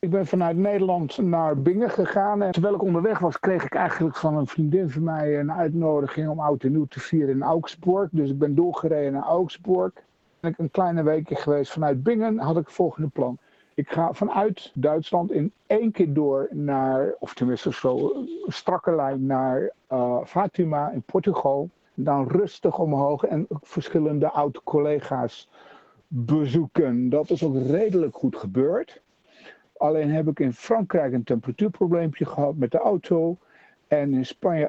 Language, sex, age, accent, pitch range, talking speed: Dutch, male, 60-79, Dutch, 140-175 Hz, 170 wpm